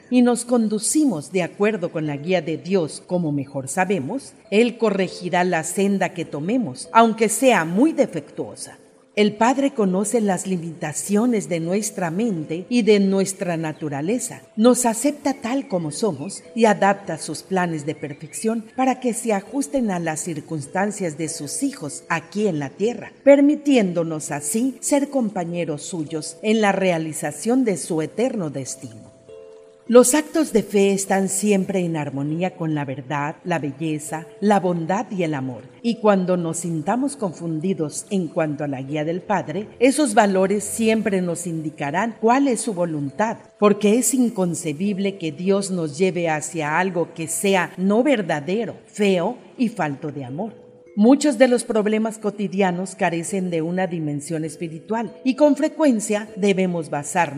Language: Spanish